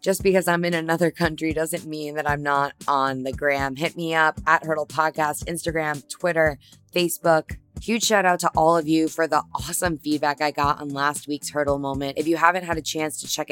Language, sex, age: English, female, 20-39